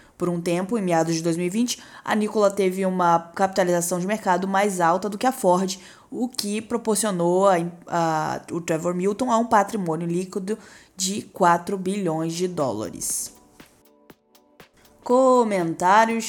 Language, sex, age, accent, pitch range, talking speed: Portuguese, female, 20-39, Brazilian, 180-235 Hz, 140 wpm